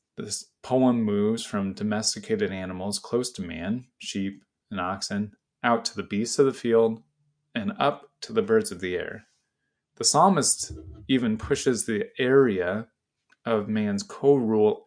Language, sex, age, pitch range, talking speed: English, male, 20-39, 105-140 Hz, 145 wpm